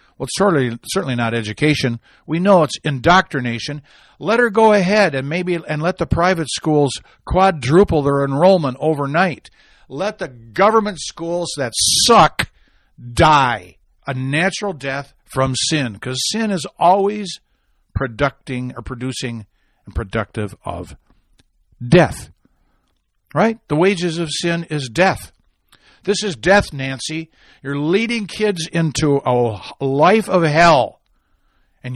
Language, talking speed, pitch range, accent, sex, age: English, 130 wpm, 115-180 Hz, American, male, 60-79